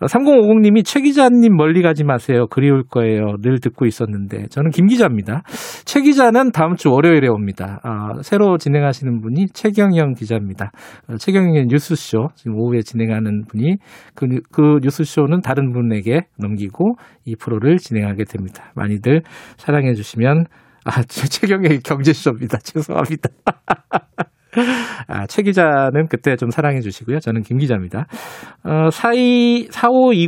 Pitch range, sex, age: 115-170 Hz, male, 40-59